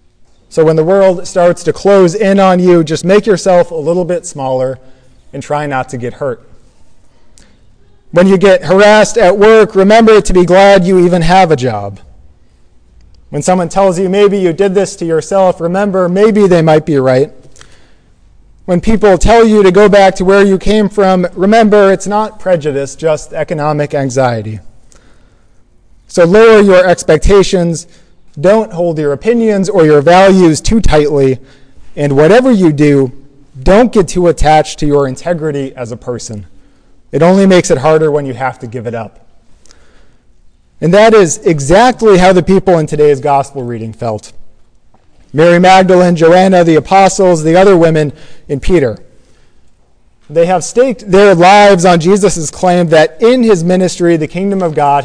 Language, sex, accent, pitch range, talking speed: English, male, American, 135-190 Hz, 165 wpm